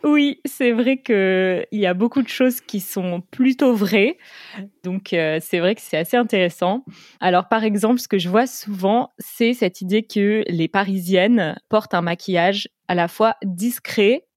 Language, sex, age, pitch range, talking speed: French, female, 20-39, 180-220 Hz, 180 wpm